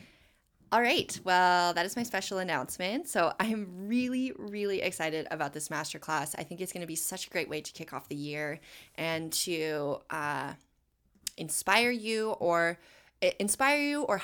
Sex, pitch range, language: female, 165-240 Hz, English